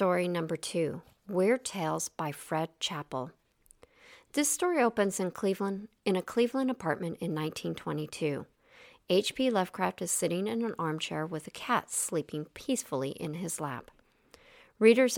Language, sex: English, female